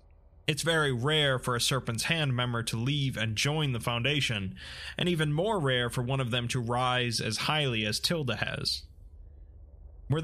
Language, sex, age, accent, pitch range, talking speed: English, male, 20-39, American, 115-145 Hz, 175 wpm